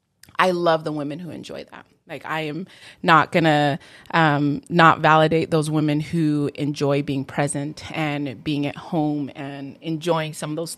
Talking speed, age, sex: 165 wpm, 20-39, female